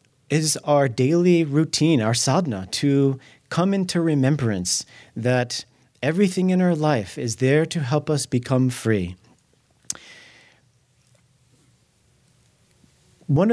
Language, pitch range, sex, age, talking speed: English, 120-160 Hz, male, 40-59, 100 wpm